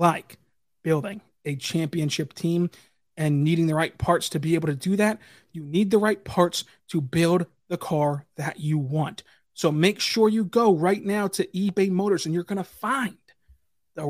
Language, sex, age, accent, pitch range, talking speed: English, male, 30-49, American, 155-190 Hz, 185 wpm